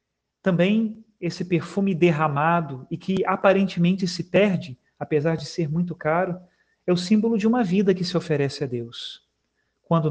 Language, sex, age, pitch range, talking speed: Portuguese, male, 40-59, 155-185 Hz, 155 wpm